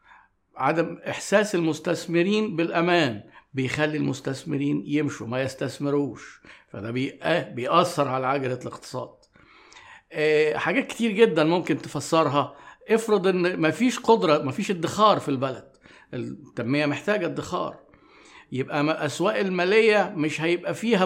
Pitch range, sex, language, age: 145-190 Hz, male, Arabic, 50-69